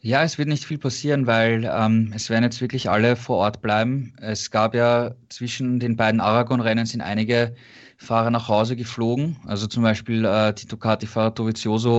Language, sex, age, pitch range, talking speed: German, male, 20-39, 110-125 Hz, 185 wpm